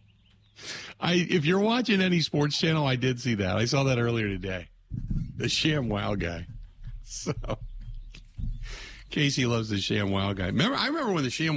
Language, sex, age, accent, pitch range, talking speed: English, male, 50-69, American, 100-130 Hz, 170 wpm